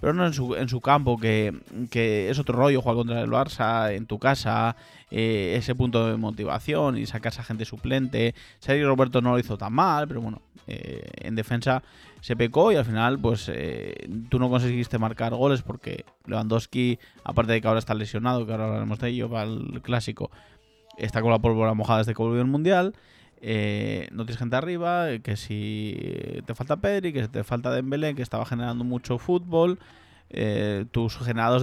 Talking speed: 190 wpm